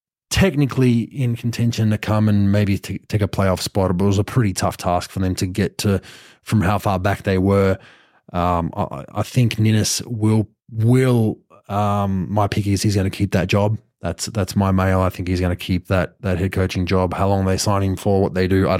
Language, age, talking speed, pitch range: English, 20-39, 230 wpm, 95-105 Hz